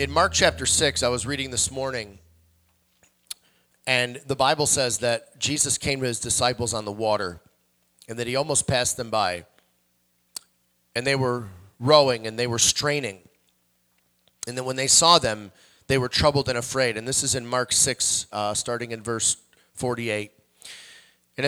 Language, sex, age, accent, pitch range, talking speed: English, male, 30-49, American, 100-135 Hz, 165 wpm